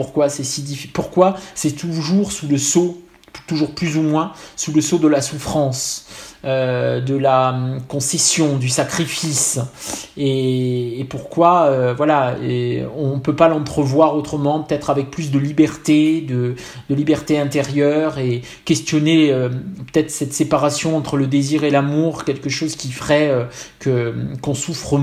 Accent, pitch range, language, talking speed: French, 130-160 Hz, French, 155 wpm